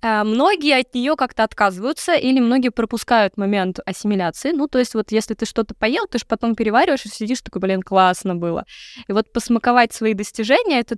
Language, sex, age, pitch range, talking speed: Russian, female, 20-39, 200-250 Hz, 185 wpm